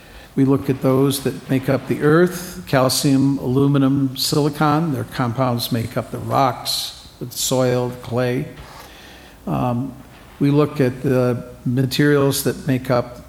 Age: 50-69